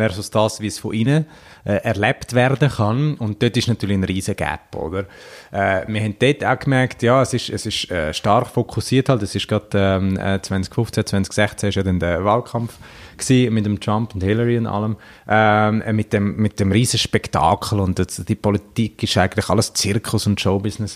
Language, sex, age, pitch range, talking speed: German, male, 30-49, 95-120 Hz, 190 wpm